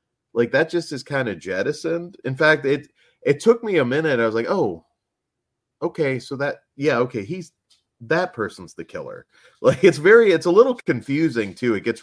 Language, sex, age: English, male, 30-49